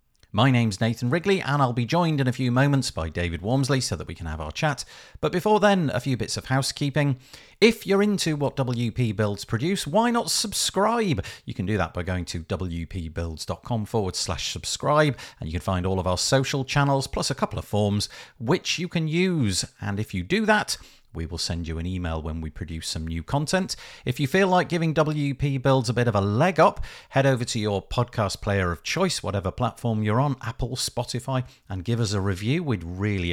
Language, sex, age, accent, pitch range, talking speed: English, male, 50-69, British, 95-145 Hz, 215 wpm